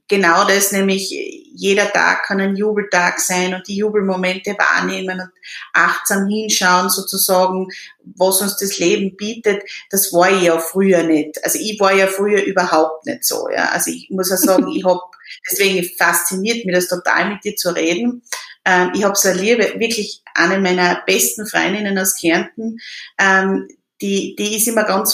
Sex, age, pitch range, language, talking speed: female, 30-49, 190-235 Hz, German, 165 wpm